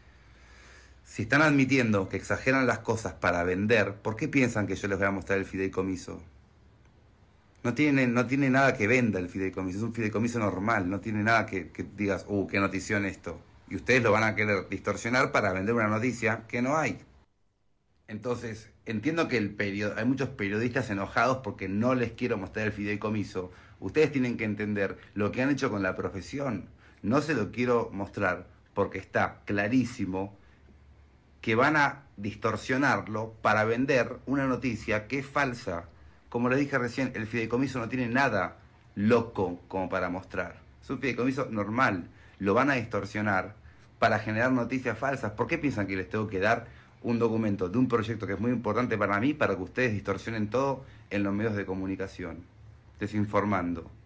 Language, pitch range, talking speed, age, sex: Spanish, 95-120 Hz, 175 wpm, 30-49, male